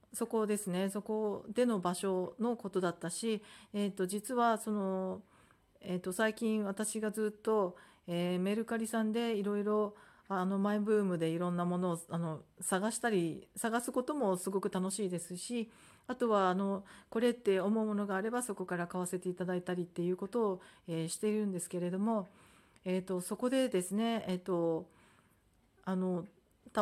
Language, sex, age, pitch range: Japanese, female, 40-59, 180-220 Hz